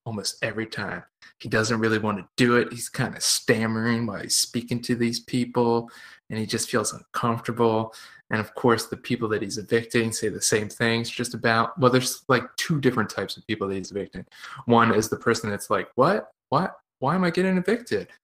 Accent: American